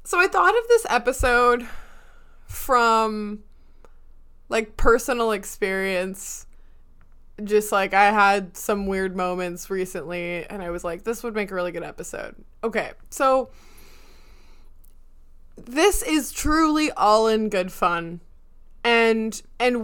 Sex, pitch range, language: female, 190-250 Hz, English